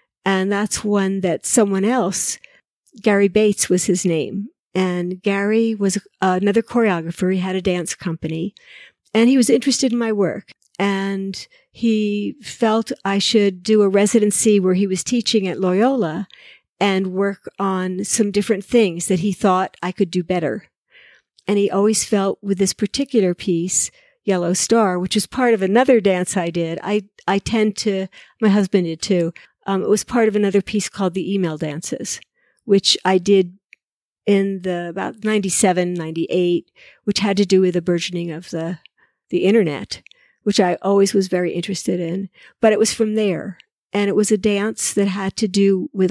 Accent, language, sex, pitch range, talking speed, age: American, English, female, 185-215 Hz, 175 wpm, 50-69